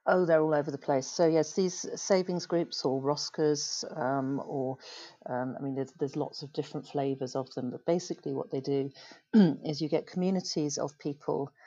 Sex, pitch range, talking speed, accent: female, 140-160 Hz, 190 wpm, British